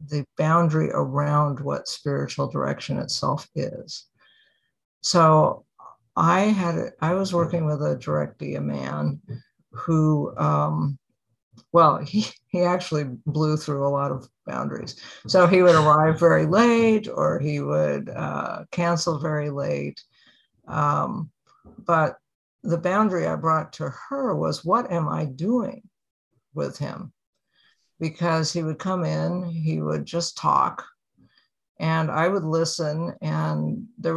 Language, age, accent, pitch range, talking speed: English, 60-79, American, 145-185 Hz, 130 wpm